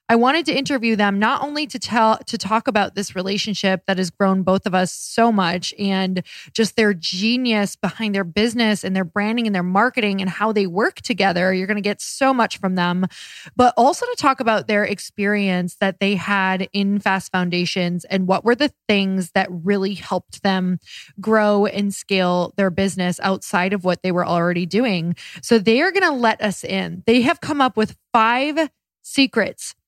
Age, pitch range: 20-39, 185-225 Hz